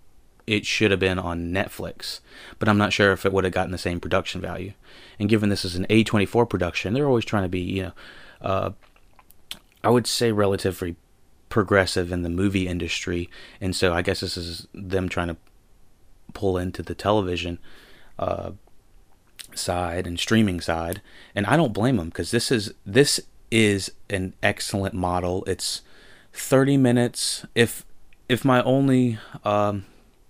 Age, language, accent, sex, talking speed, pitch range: 30-49, English, American, male, 160 wpm, 90-110 Hz